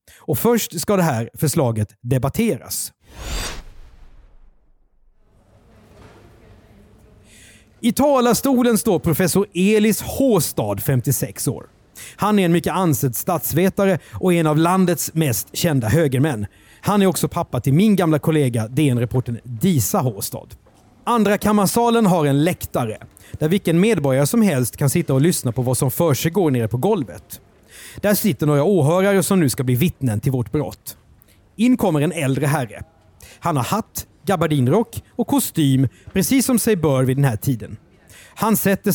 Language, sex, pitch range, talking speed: Swedish, male, 115-190 Hz, 140 wpm